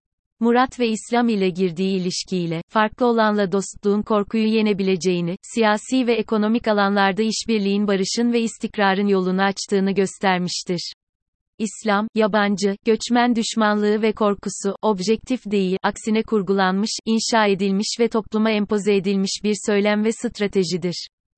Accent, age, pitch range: native, 30-49, 190-220 Hz